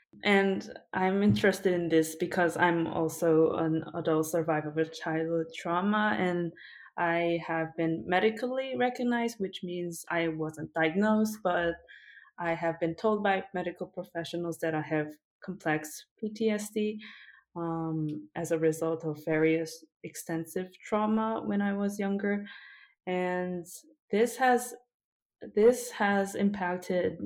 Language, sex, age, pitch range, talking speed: English, female, 20-39, 165-200 Hz, 125 wpm